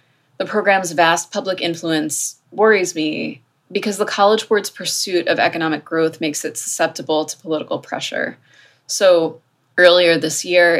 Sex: female